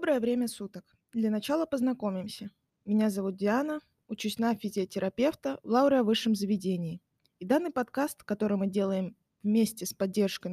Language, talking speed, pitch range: Finnish, 150 wpm, 200-250 Hz